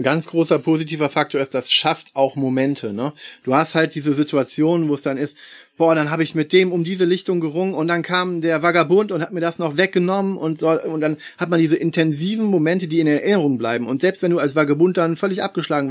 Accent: German